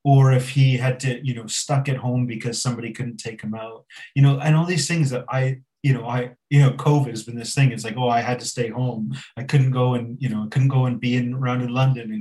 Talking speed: 285 wpm